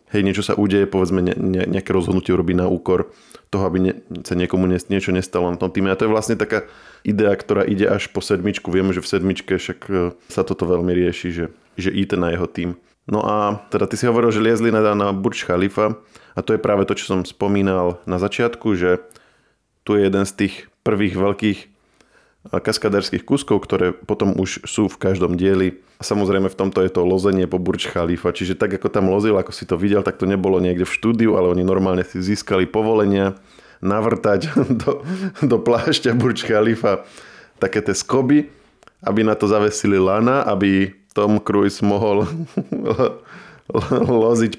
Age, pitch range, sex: 20-39, 95-110 Hz, male